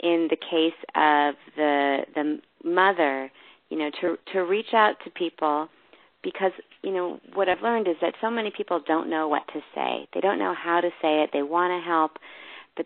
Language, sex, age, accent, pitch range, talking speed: English, female, 40-59, American, 150-175 Hz, 200 wpm